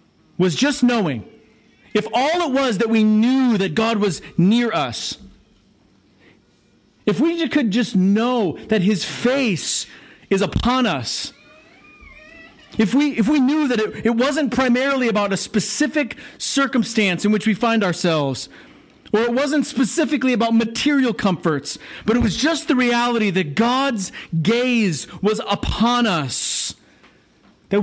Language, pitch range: English, 195-245 Hz